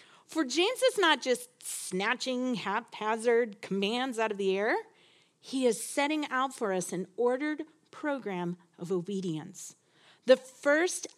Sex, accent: female, American